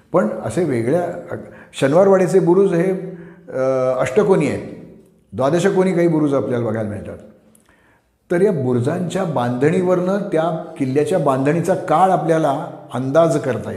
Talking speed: 115 wpm